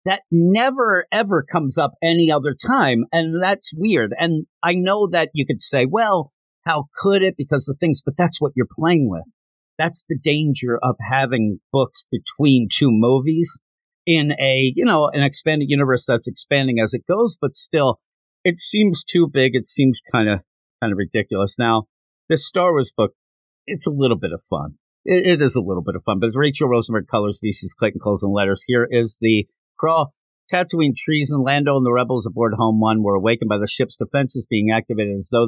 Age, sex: 50-69, male